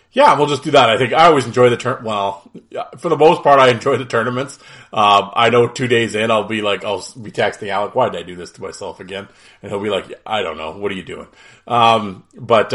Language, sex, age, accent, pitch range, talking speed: English, male, 30-49, American, 100-140 Hz, 270 wpm